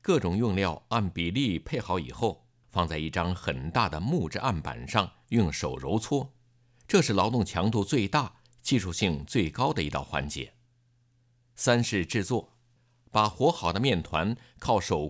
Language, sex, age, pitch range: Chinese, male, 50-69, 95-125 Hz